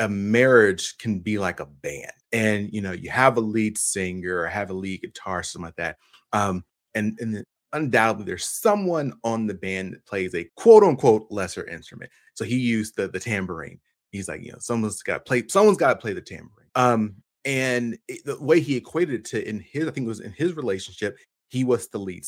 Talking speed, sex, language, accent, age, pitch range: 215 wpm, male, English, American, 30-49, 105-130 Hz